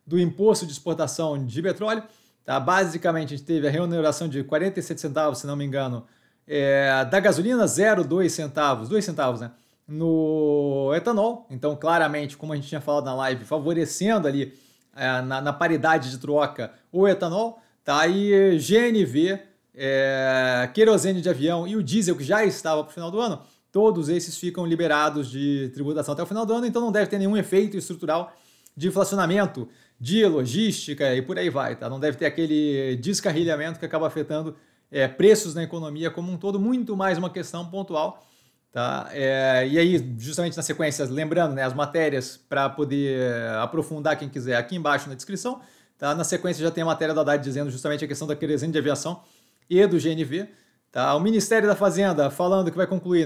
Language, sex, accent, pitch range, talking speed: Portuguese, male, Brazilian, 145-190 Hz, 175 wpm